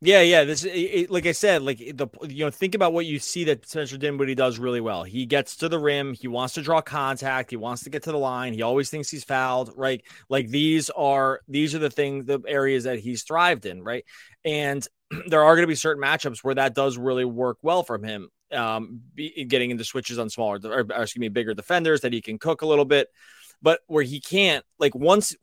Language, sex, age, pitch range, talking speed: English, male, 20-39, 125-150 Hz, 235 wpm